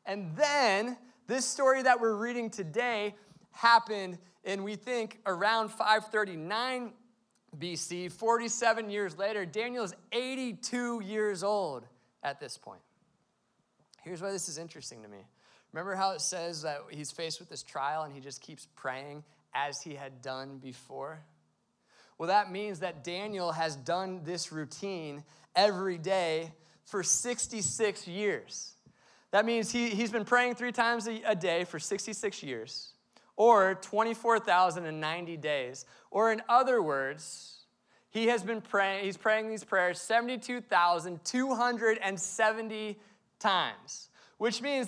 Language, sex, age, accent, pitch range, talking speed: English, male, 20-39, American, 175-230 Hz, 130 wpm